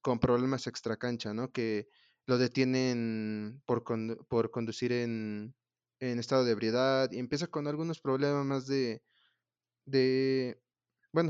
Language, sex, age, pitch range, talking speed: Spanish, male, 20-39, 115-135 Hz, 140 wpm